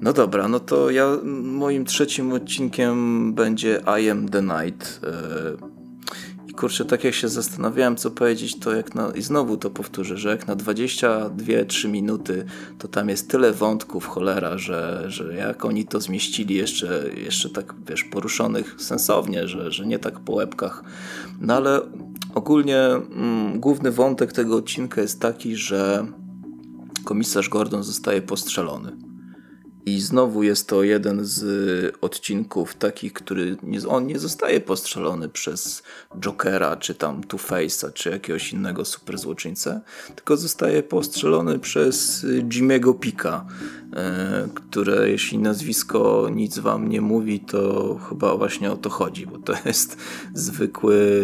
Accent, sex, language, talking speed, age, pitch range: native, male, Polish, 140 wpm, 20-39, 95-125 Hz